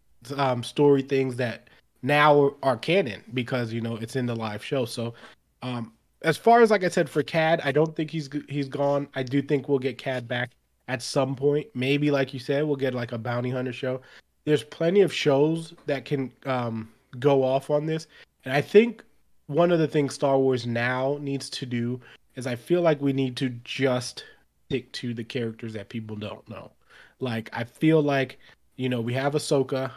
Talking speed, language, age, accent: 205 wpm, English, 20-39, American